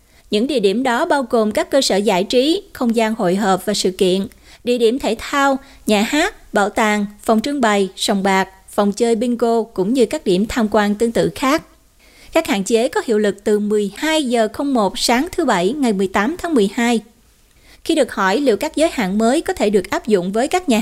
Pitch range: 205-270 Hz